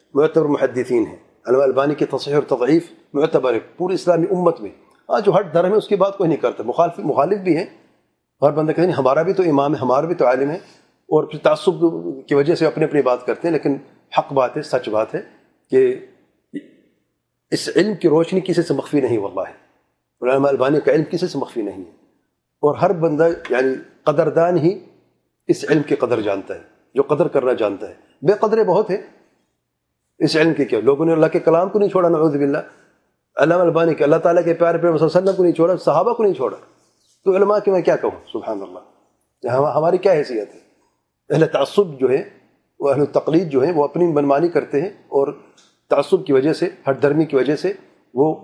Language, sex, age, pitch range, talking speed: English, male, 40-59, 145-195 Hz, 165 wpm